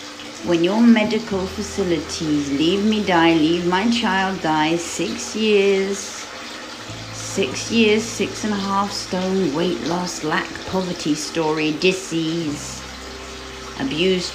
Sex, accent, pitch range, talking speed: female, British, 120-170 Hz, 115 wpm